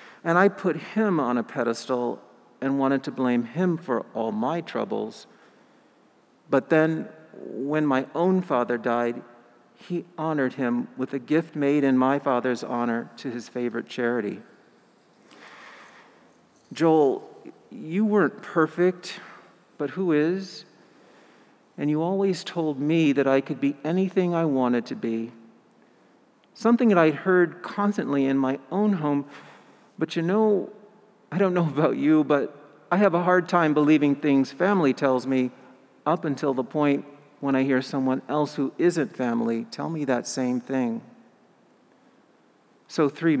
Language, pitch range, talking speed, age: English, 130-175 Hz, 145 wpm, 50-69